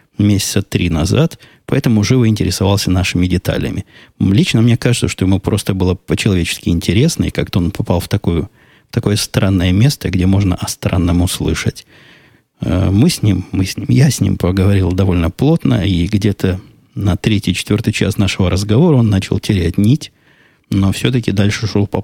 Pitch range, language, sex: 95-120 Hz, Russian, male